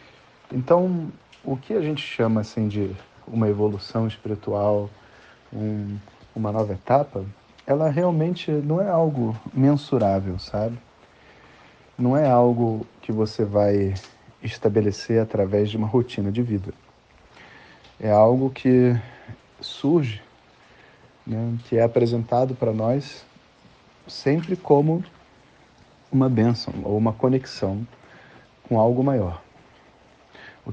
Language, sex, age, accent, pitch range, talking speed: Portuguese, male, 40-59, Brazilian, 105-125 Hz, 105 wpm